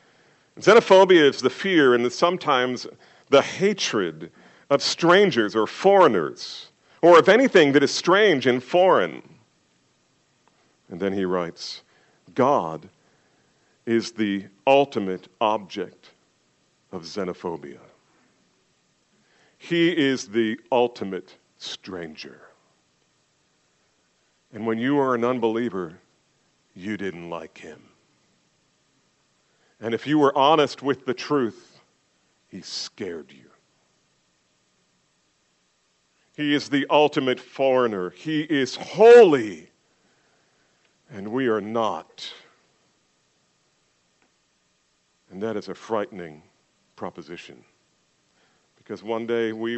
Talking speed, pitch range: 95 wpm, 105-150 Hz